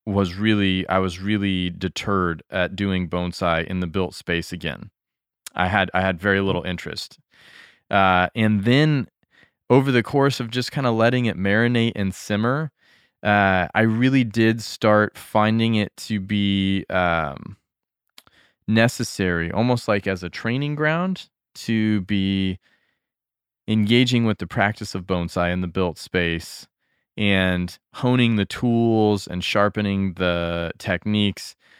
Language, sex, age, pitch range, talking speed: English, male, 20-39, 95-115 Hz, 140 wpm